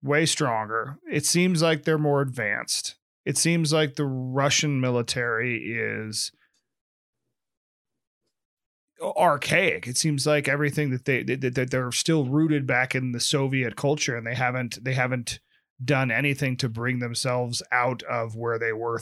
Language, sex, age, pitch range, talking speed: English, male, 30-49, 125-150 Hz, 145 wpm